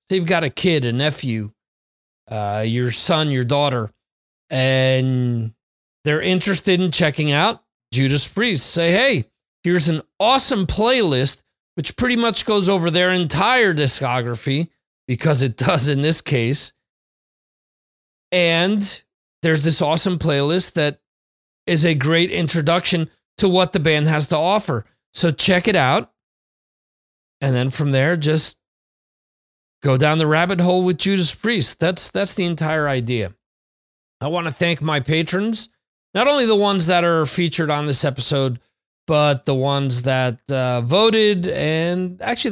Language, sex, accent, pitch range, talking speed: English, male, American, 130-180 Hz, 145 wpm